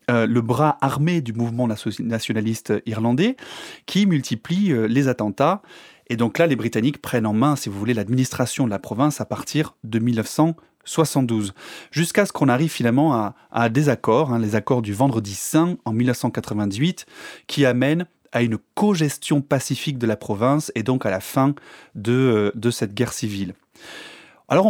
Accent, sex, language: French, male, French